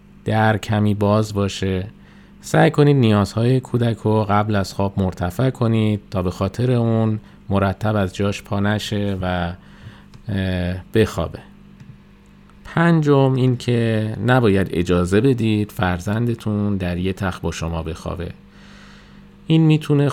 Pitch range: 95-120 Hz